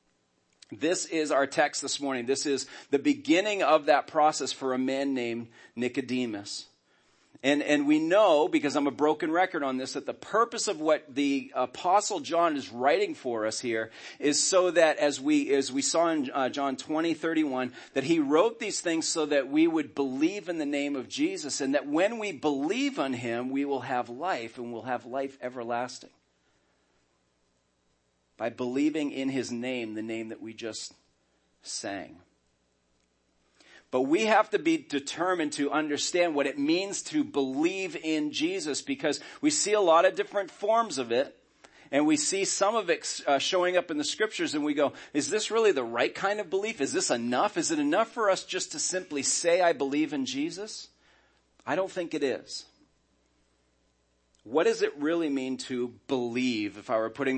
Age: 40-59